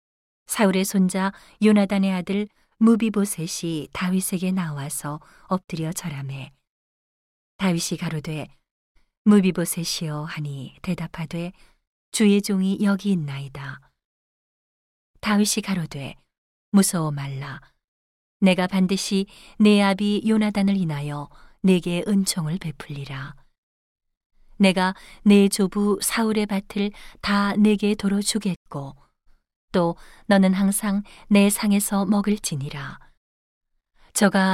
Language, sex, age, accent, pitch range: Korean, female, 40-59, native, 160-205 Hz